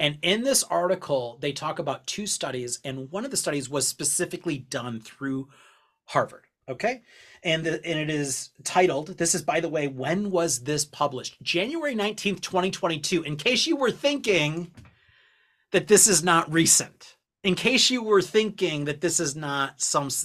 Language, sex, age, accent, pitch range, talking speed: English, male, 30-49, American, 135-180 Hz, 170 wpm